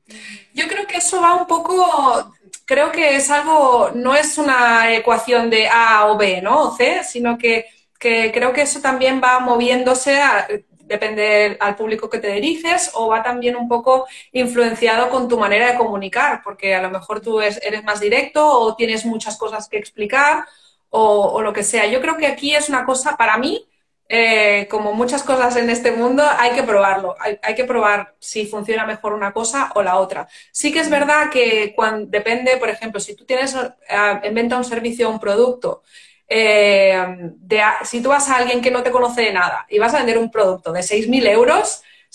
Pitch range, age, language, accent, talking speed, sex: 210-265 Hz, 30-49, Spanish, Spanish, 200 wpm, female